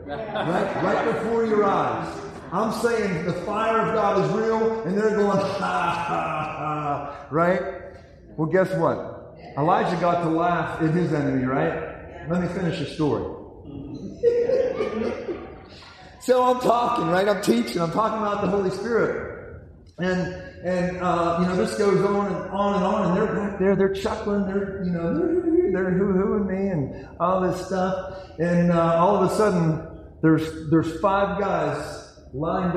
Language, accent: English, American